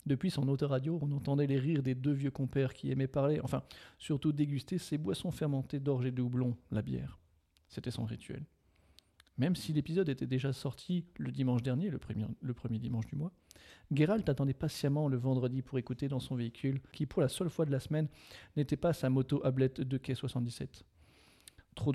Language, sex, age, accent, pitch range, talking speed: French, male, 40-59, French, 125-145 Hz, 195 wpm